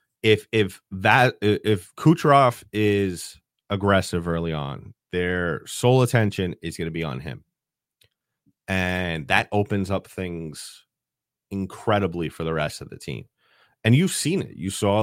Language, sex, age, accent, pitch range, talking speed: English, male, 30-49, American, 90-115 Hz, 145 wpm